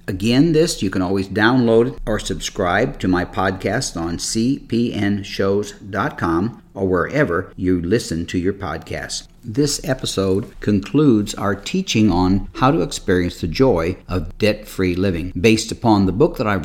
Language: English